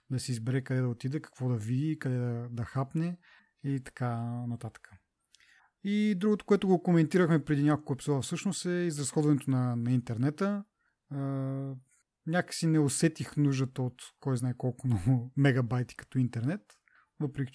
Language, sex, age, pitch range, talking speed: Bulgarian, male, 30-49, 130-155 Hz, 150 wpm